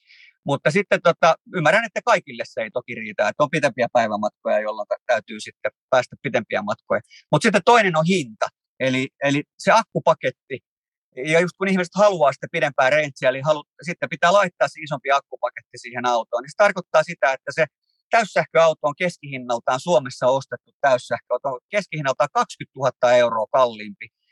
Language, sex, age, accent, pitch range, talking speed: Finnish, male, 30-49, native, 125-170 Hz, 155 wpm